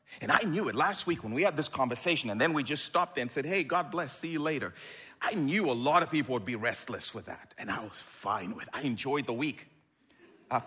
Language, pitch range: English, 115-160 Hz